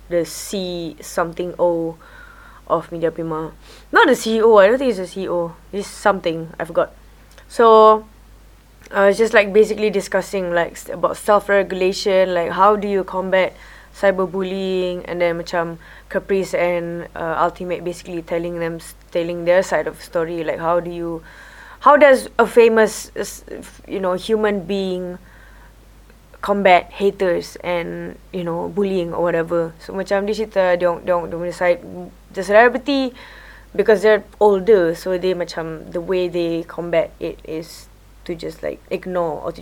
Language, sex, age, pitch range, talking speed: English, female, 20-39, 170-210 Hz, 150 wpm